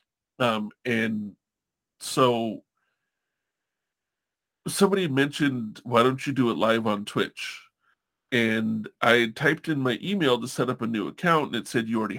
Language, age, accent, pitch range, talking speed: English, 40-59, American, 115-140 Hz, 150 wpm